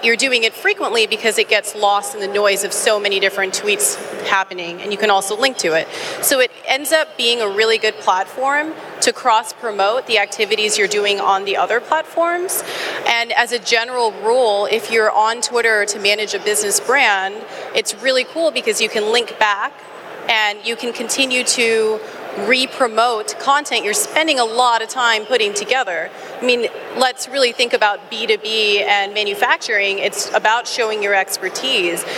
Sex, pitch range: female, 205-250 Hz